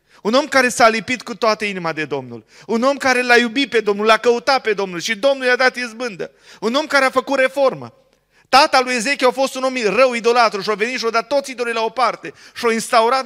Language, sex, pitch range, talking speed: Romanian, male, 190-250 Hz, 245 wpm